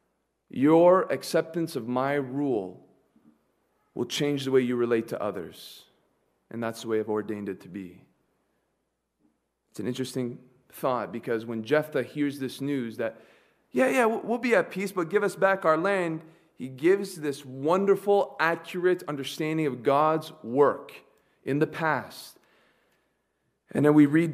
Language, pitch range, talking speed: English, 130-180 Hz, 150 wpm